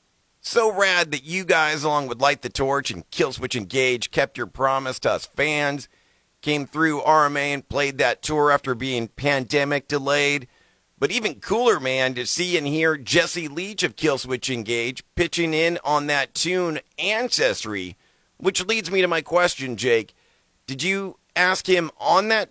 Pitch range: 135-180 Hz